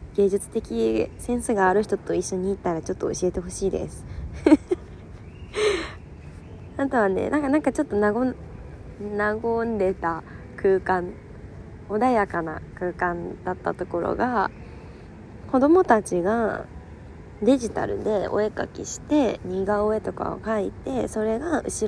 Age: 20-39